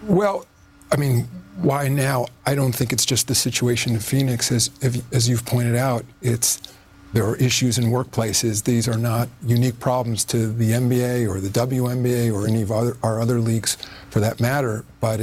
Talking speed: 190 wpm